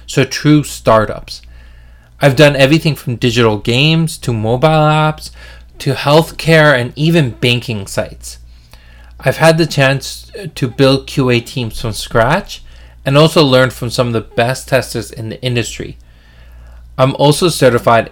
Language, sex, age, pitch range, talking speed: English, male, 20-39, 105-145 Hz, 140 wpm